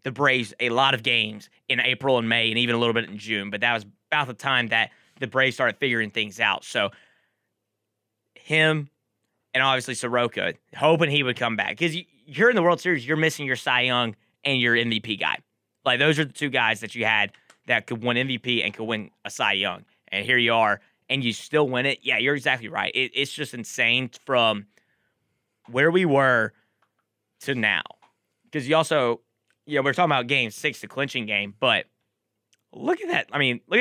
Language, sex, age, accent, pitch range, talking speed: English, male, 20-39, American, 115-140 Hz, 205 wpm